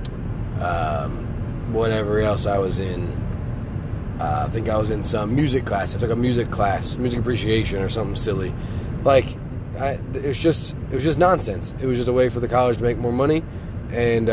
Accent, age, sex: American, 20-39, male